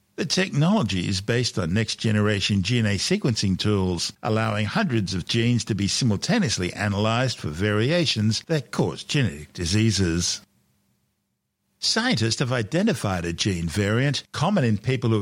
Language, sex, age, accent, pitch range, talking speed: English, male, 60-79, Australian, 100-135 Hz, 130 wpm